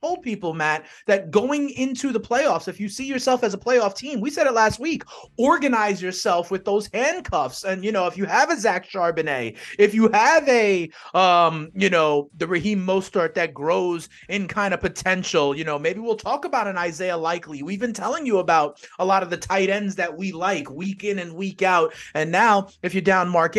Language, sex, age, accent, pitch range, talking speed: English, male, 30-49, American, 155-220 Hz, 215 wpm